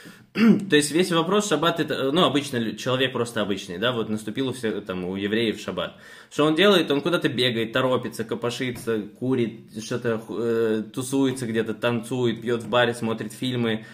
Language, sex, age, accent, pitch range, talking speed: Russian, male, 20-39, native, 115-145 Hz, 155 wpm